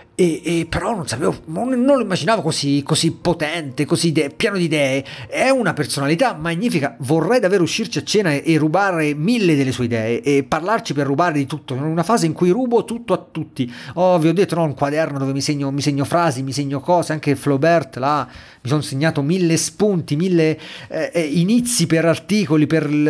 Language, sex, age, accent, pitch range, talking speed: Italian, male, 40-59, native, 140-190 Hz, 180 wpm